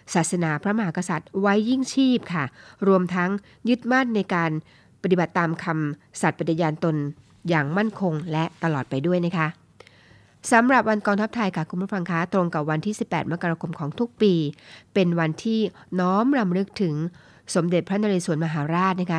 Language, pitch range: Thai, 160-200 Hz